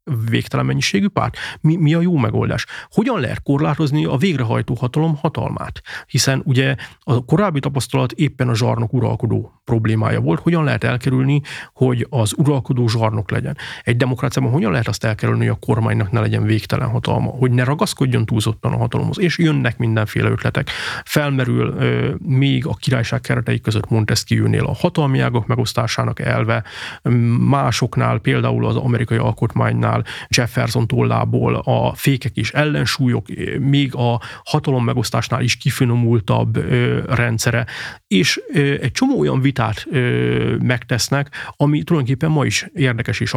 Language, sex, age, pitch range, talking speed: Hungarian, male, 30-49, 115-140 Hz, 135 wpm